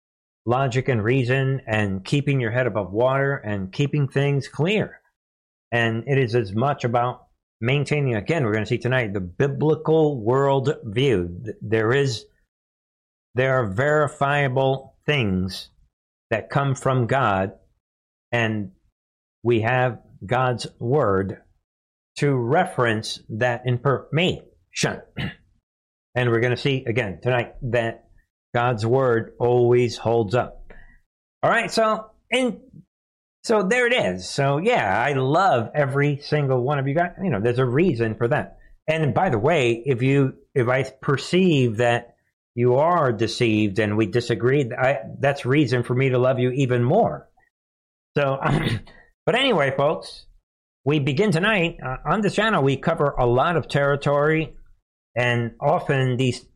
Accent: American